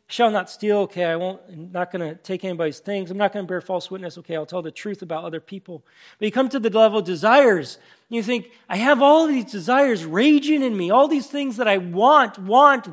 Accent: American